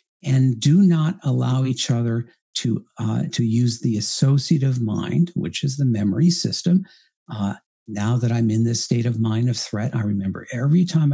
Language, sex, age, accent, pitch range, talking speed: English, male, 50-69, American, 115-155 Hz, 180 wpm